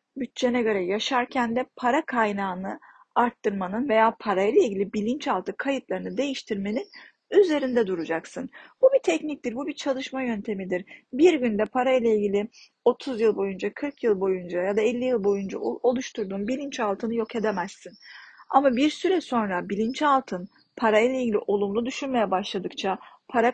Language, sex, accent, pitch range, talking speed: Turkish, female, native, 205-255 Hz, 140 wpm